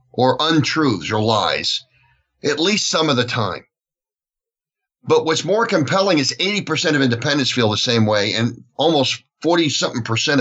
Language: English